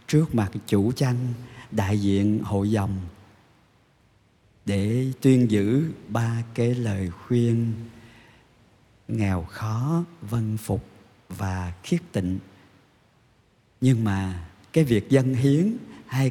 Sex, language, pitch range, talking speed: male, Vietnamese, 105-135 Hz, 105 wpm